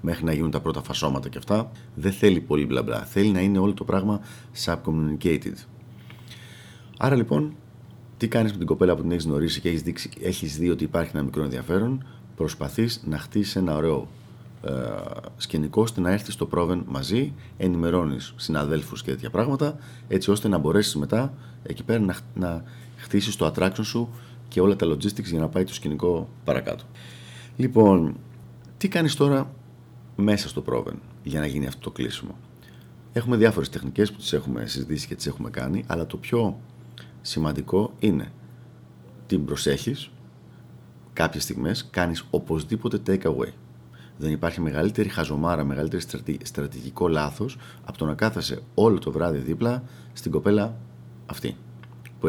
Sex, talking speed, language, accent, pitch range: male, 155 wpm, Greek, native, 70-110 Hz